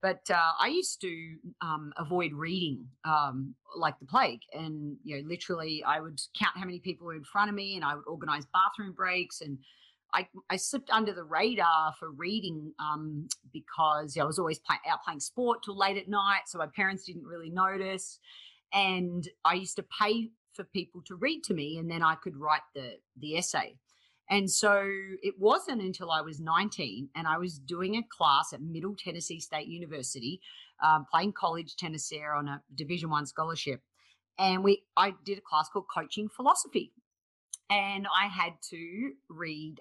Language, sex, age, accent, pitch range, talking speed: English, female, 40-59, Australian, 155-195 Hz, 190 wpm